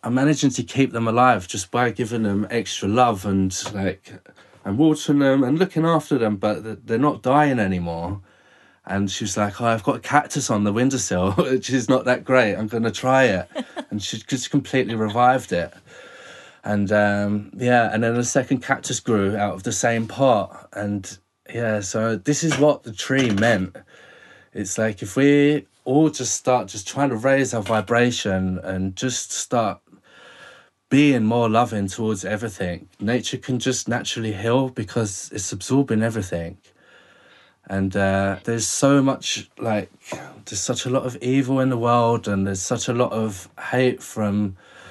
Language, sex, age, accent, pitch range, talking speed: English, male, 20-39, British, 100-130 Hz, 175 wpm